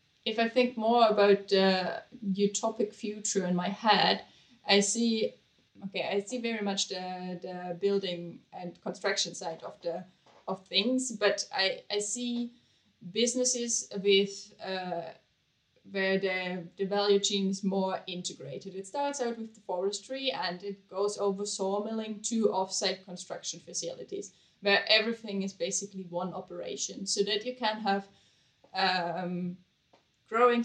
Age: 70-89